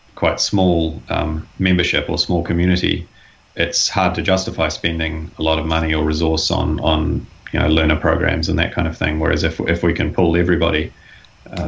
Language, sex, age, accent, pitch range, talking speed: English, male, 30-49, Australian, 80-90 Hz, 190 wpm